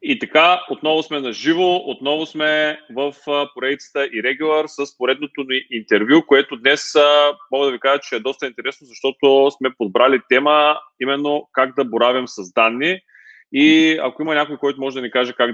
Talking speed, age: 180 wpm, 30-49